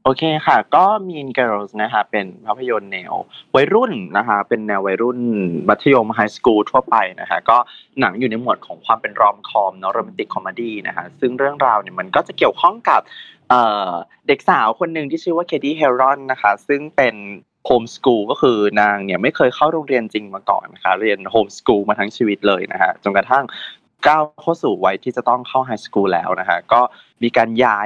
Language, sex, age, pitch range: Thai, male, 20-39, 105-140 Hz